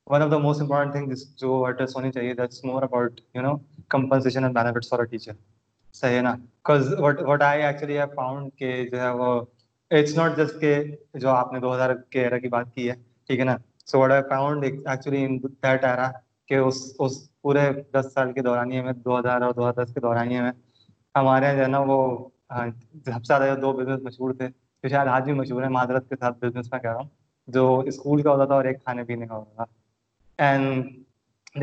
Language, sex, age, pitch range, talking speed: Urdu, male, 20-39, 125-140 Hz, 55 wpm